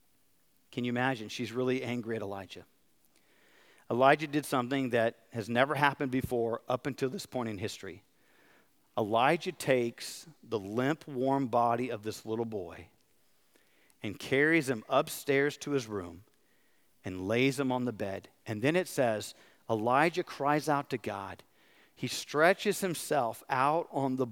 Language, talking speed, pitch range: English, 150 wpm, 120-155 Hz